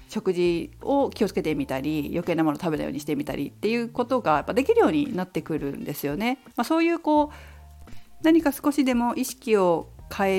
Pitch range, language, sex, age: 170-275 Hz, Japanese, female, 50-69